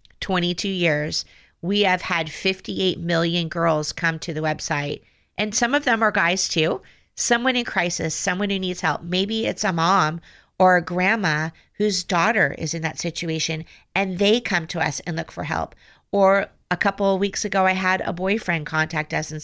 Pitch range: 165-195 Hz